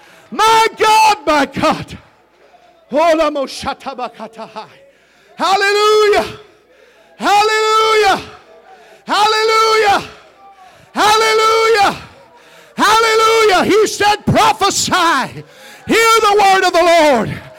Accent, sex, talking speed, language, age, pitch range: American, male, 60 wpm, English, 40-59, 280-420 Hz